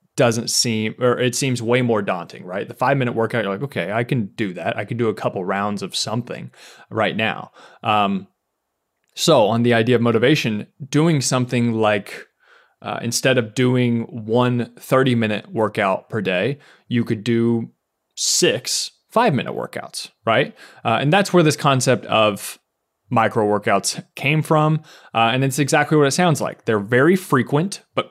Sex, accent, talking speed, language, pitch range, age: male, American, 175 wpm, English, 110-140 Hz, 30-49